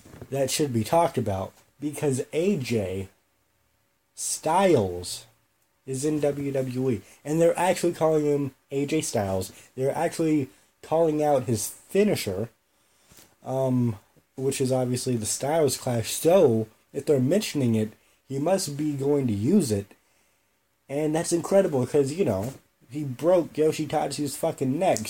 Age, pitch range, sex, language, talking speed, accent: 30-49, 115-155 Hz, male, English, 130 wpm, American